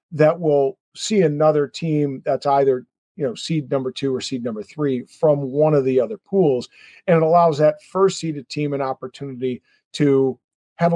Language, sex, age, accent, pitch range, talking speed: English, male, 50-69, American, 145-190 Hz, 180 wpm